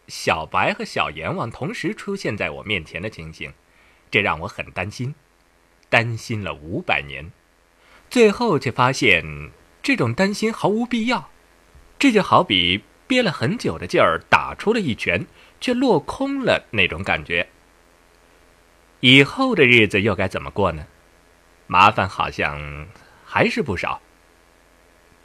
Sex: male